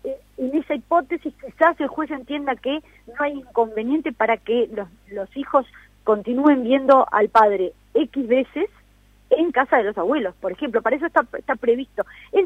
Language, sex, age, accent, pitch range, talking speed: Spanish, female, 40-59, Argentinian, 205-275 Hz, 175 wpm